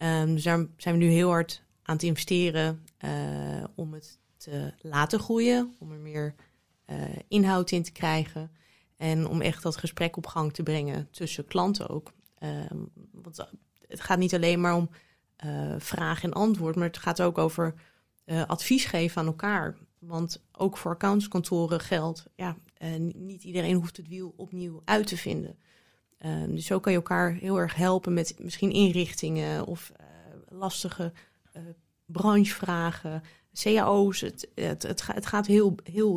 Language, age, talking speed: Dutch, 20-39, 165 wpm